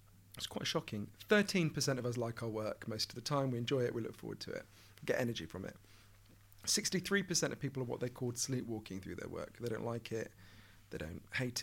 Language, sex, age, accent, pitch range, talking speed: English, male, 40-59, British, 105-145 Hz, 220 wpm